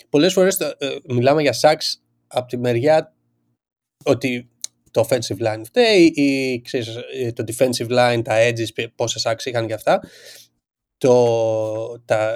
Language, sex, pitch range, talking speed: Greek, male, 115-155 Hz, 115 wpm